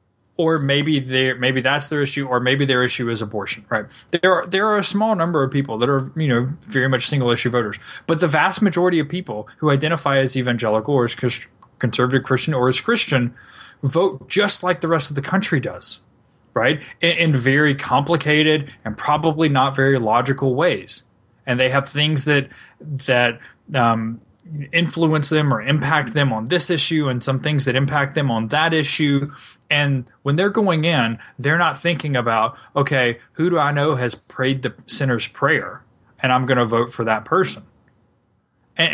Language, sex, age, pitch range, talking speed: English, male, 20-39, 125-160 Hz, 190 wpm